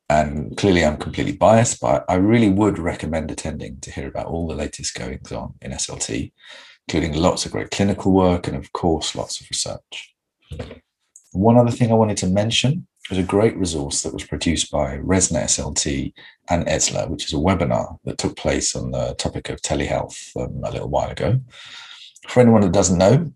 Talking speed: 190 wpm